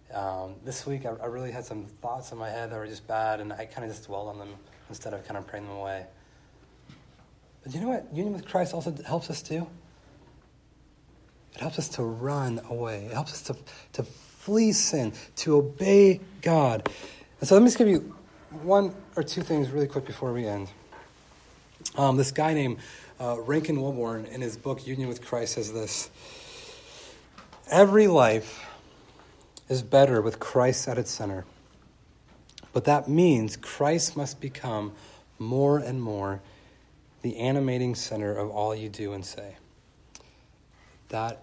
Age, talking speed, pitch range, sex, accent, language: 30-49, 170 wpm, 110-150 Hz, male, American, English